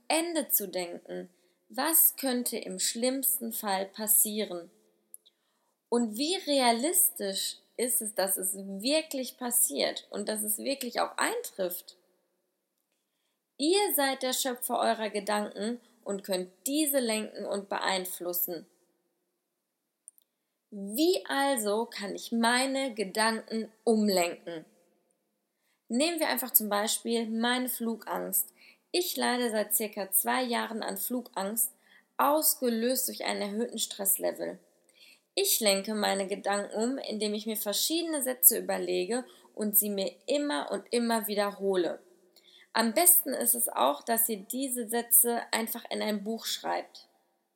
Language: German